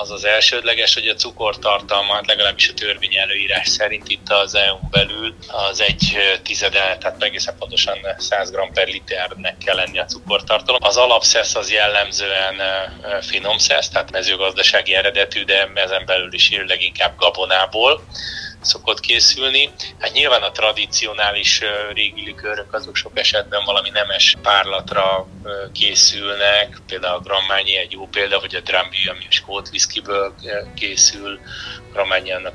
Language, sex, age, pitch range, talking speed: Hungarian, male, 30-49, 95-105 Hz, 140 wpm